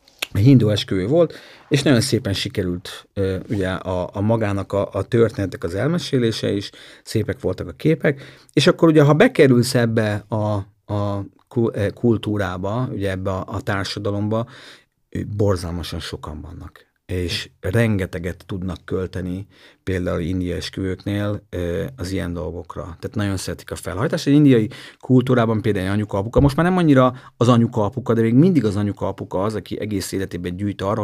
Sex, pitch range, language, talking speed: male, 95-125 Hz, Hungarian, 145 wpm